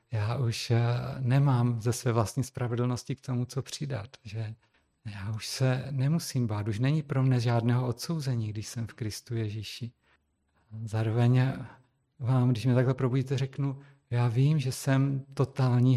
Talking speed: 150 wpm